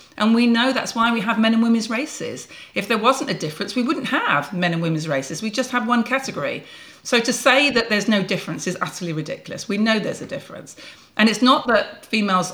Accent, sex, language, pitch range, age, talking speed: British, female, English, 170-225 Hz, 40-59, 230 wpm